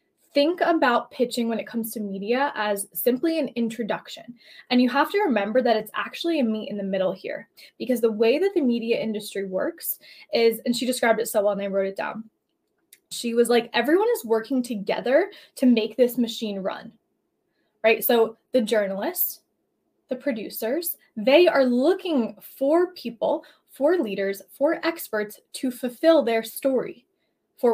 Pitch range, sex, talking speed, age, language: 225-300 Hz, female, 170 wpm, 10-29, English